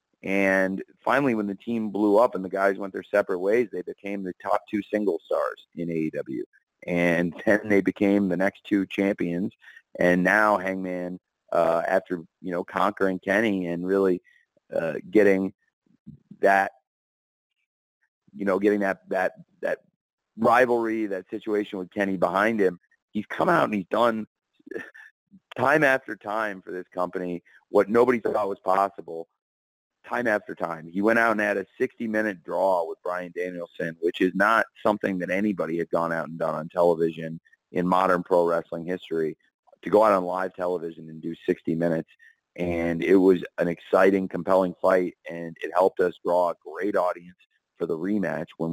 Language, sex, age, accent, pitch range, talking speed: English, male, 30-49, American, 85-100 Hz, 165 wpm